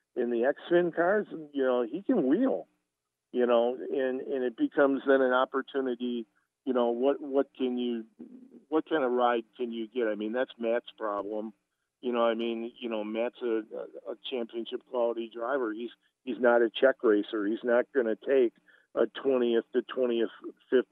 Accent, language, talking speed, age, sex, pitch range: American, English, 185 wpm, 50-69, male, 115-135 Hz